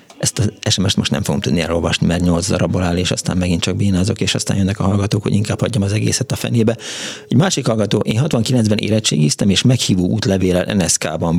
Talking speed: 200 wpm